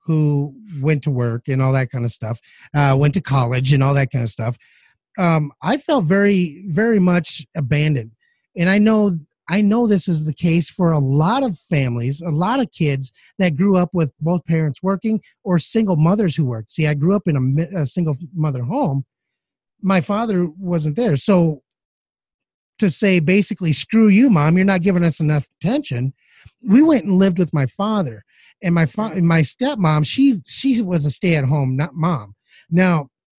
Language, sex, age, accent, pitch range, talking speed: English, male, 30-49, American, 150-210 Hz, 190 wpm